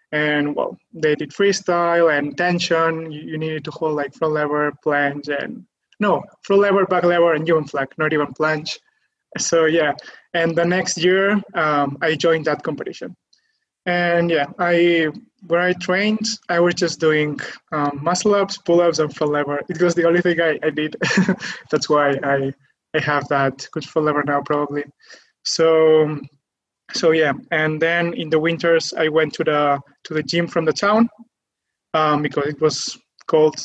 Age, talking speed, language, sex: 20-39, 175 wpm, English, male